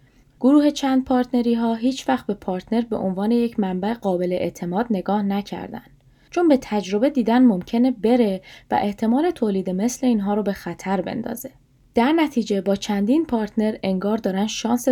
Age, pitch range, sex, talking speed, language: 10-29, 190-250 Hz, female, 155 wpm, Persian